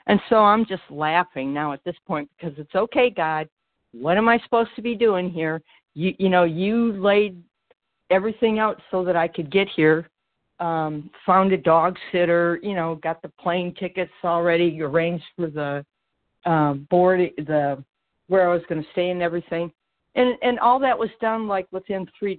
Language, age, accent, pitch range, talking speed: English, 60-79, American, 160-200 Hz, 185 wpm